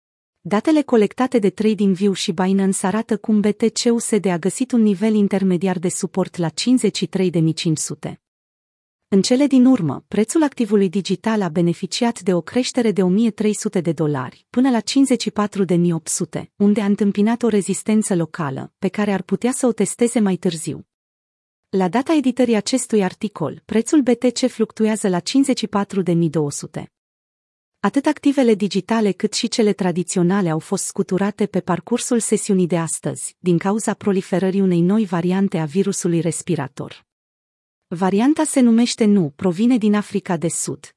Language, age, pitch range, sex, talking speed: Romanian, 30-49, 175-225 Hz, female, 140 wpm